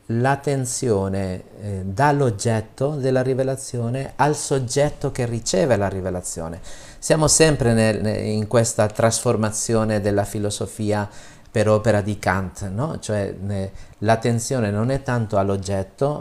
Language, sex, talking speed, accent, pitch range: Italian, male, 120 wpm, native, 100-130 Hz